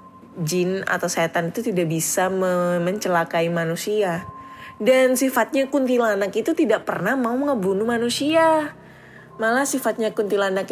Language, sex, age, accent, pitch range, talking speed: Indonesian, female, 10-29, native, 170-225 Hz, 110 wpm